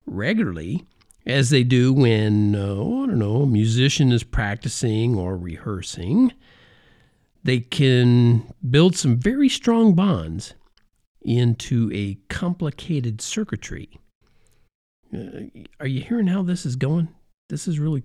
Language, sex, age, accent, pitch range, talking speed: English, male, 50-69, American, 110-155 Hz, 125 wpm